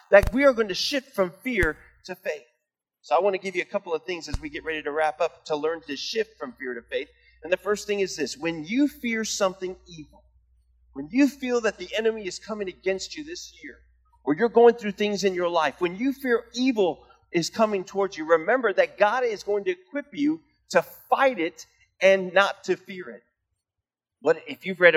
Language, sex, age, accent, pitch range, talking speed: English, male, 40-59, American, 150-225 Hz, 225 wpm